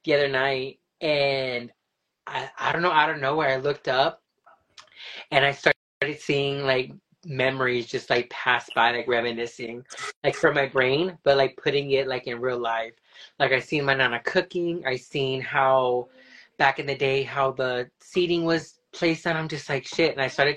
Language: English